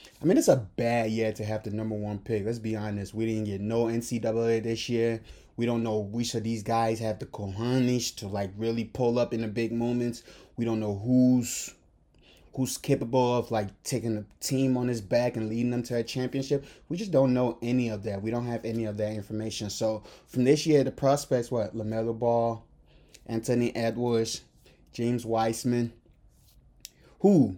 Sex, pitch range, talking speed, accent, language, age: male, 115-160 Hz, 195 wpm, American, English, 20-39